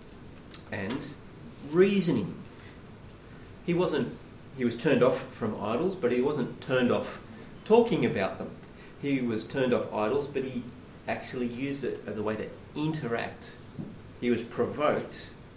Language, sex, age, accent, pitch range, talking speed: English, male, 40-59, Australian, 105-130 Hz, 140 wpm